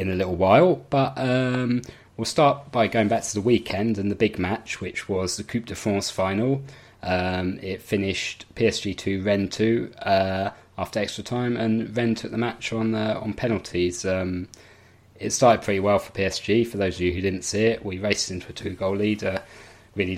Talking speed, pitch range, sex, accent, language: 210 wpm, 90-110 Hz, male, British, English